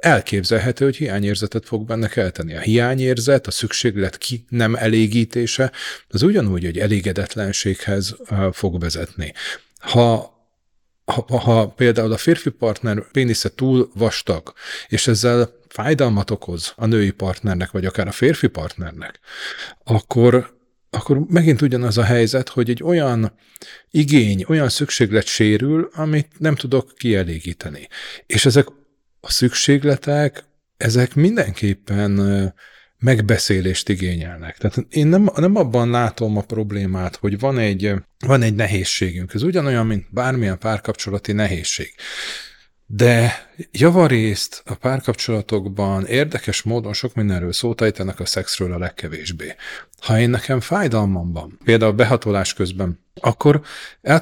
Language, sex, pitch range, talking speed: Hungarian, male, 100-130 Hz, 120 wpm